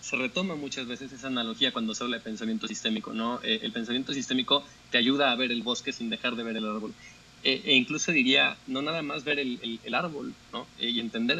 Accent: Mexican